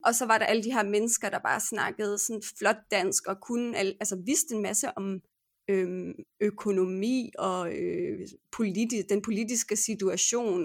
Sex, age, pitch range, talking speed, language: female, 30-49, 200-255 Hz, 170 wpm, Danish